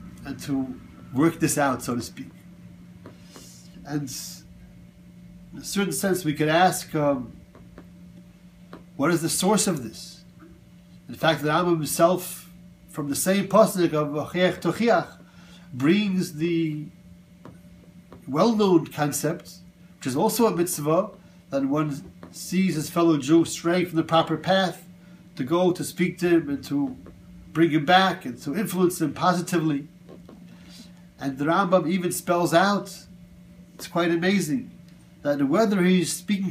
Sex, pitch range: male, 140-180 Hz